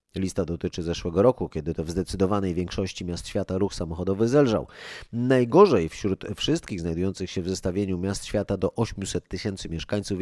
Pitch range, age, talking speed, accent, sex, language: 90-115 Hz, 30-49, 160 wpm, native, male, Polish